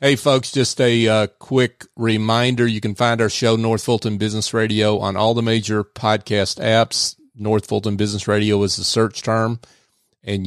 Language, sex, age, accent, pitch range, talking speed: English, male, 40-59, American, 105-125 Hz, 180 wpm